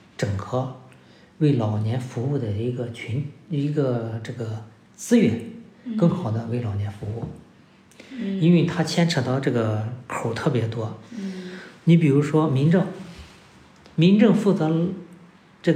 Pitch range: 120-175 Hz